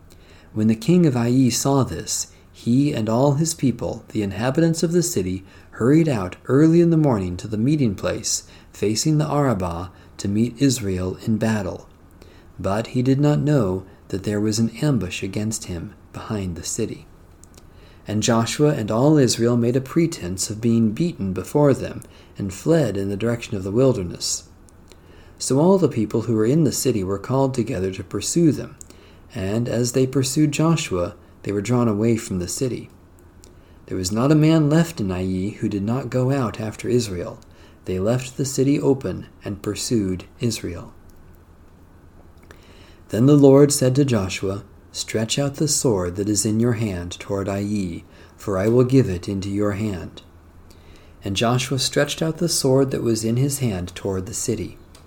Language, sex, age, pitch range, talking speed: English, male, 40-59, 90-130 Hz, 175 wpm